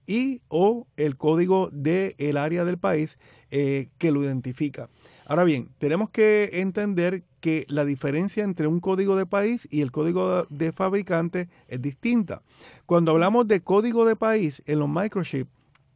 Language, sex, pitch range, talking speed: Spanish, male, 145-190 Hz, 155 wpm